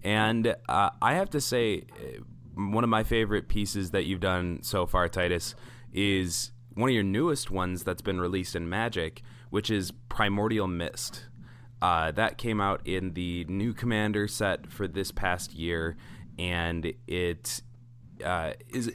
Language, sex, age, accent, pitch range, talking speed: English, male, 20-39, American, 90-115 Hz, 150 wpm